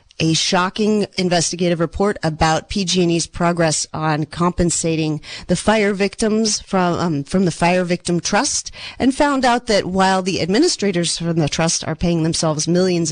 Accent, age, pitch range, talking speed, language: American, 40-59, 160-200 Hz, 150 wpm, English